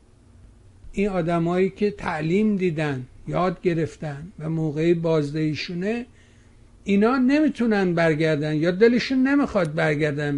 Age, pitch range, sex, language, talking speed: 60-79, 150-205 Hz, male, Persian, 100 wpm